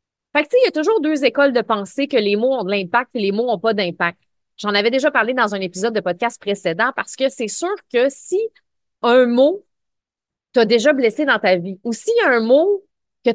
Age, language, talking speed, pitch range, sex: 30-49, French, 240 wpm, 200-260 Hz, female